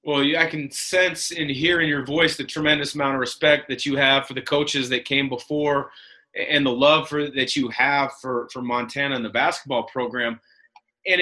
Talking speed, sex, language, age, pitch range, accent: 205 wpm, male, English, 30-49, 135-165 Hz, American